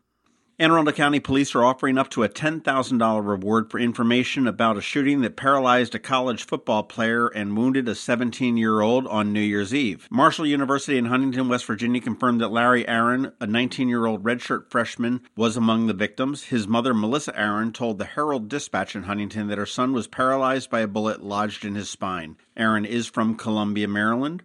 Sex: male